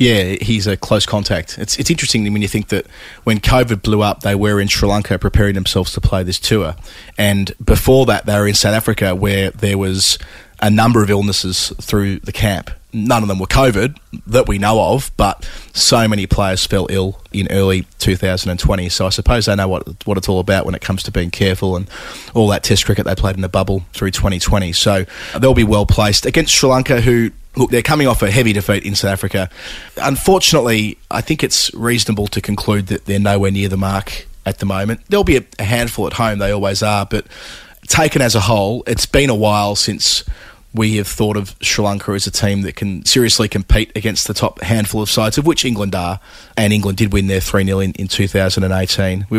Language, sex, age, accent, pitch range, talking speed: English, male, 20-39, Australian, 95-110 Hz, 215 wpm